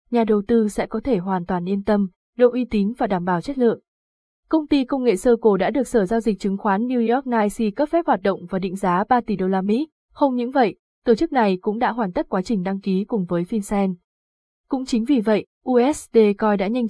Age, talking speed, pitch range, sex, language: 20-39, 250 wpm, 200-250 Hz, female, Vietnamese